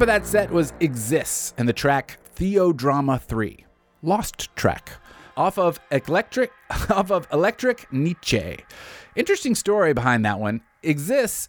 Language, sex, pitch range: English, male, 115-170 Hz